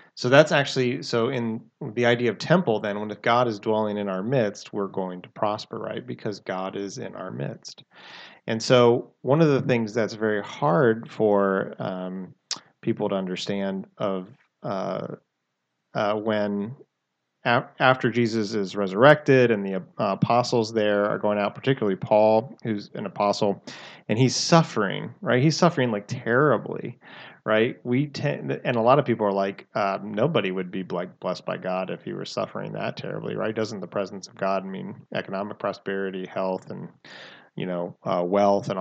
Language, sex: English, male